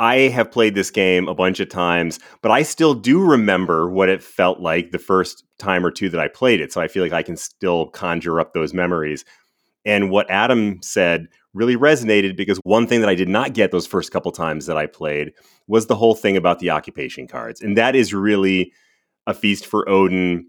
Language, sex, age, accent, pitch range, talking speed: English, male, 30-49, American, 90-110 Hz, 220 wpm